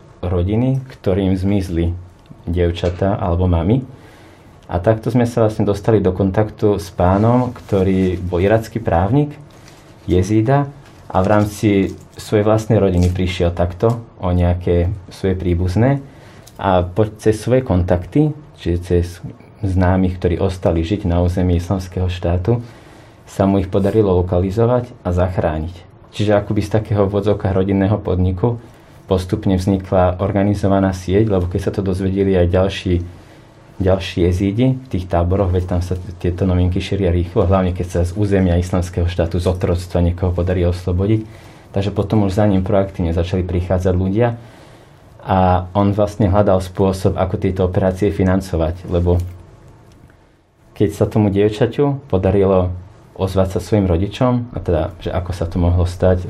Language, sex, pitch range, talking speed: Slovak, male, 90-110 Hz, 140 wpm